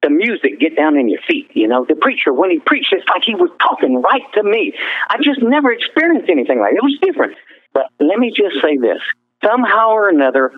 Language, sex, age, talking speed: English, male, 50-69, 235 wpm